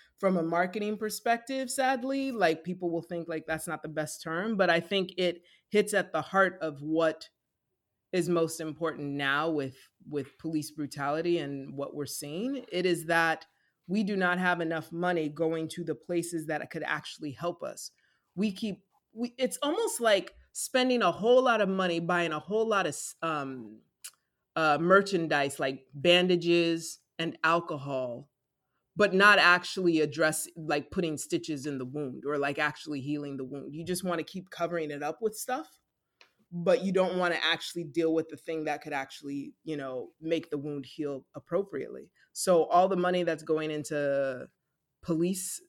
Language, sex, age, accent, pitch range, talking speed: English, female, 30-49, American, 150-190 Hz, 175 wpm